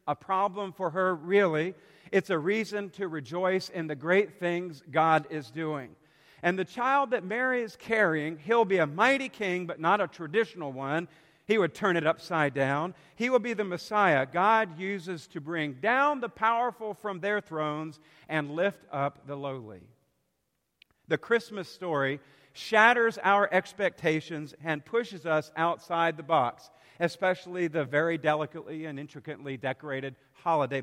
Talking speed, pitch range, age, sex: 155 wpm, 155-200 Hz, 50-69, male